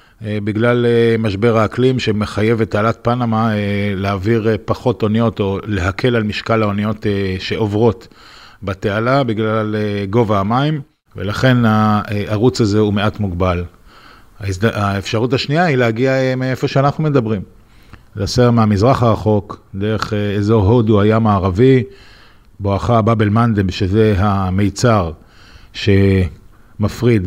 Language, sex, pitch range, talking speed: Hebrew, male, 100-115 Hz, 105 wpm